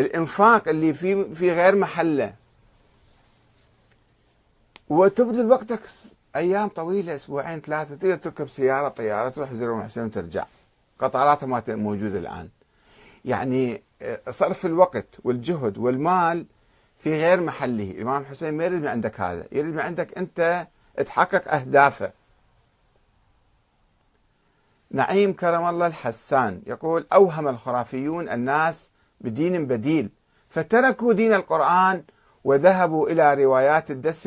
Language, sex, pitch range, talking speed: Arabic, male, 120-170 Hz, 110 wpm